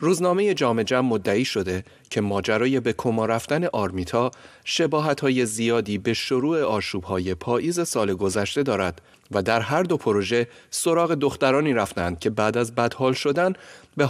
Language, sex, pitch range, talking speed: Persian, male, 105-140 Hz, 140 wpm